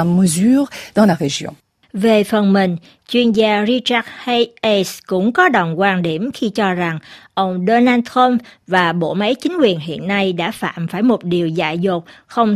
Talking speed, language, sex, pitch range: 160 wpm, Vietnamese, female, 185-255 Hz